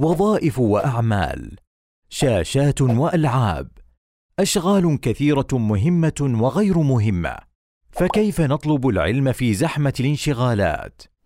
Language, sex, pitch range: Arabic, male, 115-160 Hz